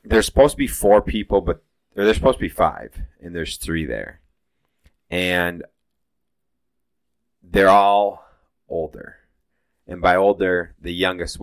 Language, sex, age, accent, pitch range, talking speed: English, male, 20-39, American, 75-85 Hz, 130 wpm